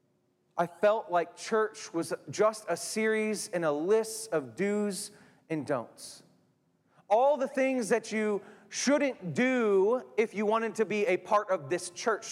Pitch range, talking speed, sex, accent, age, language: 195-255 Hz, 155 wpm, male, American, 30-49, English